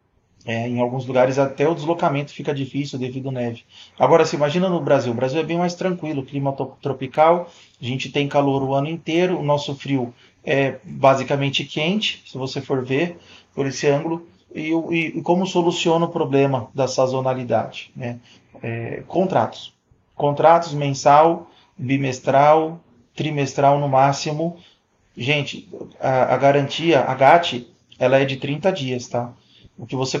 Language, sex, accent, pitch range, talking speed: Portuguese, male, Brazilian, 130-150 Hz, 160 wpm